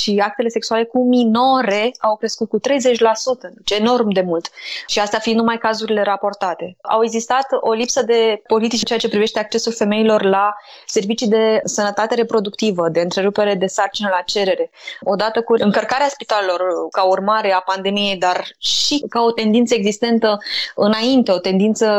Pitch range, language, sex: 200-230 Hz, Romanian, female